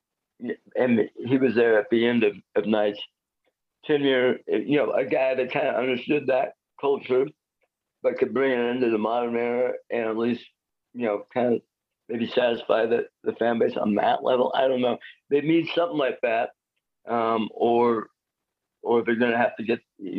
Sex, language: male, English